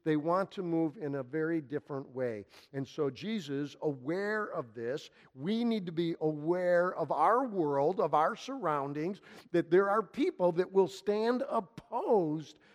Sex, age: male, 50-69